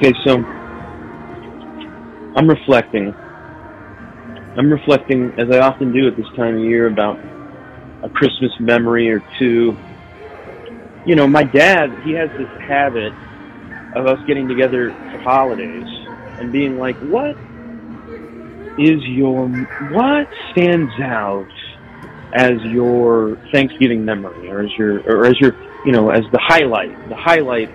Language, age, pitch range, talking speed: English, 30-49, 110-140 Hz, 130 wpm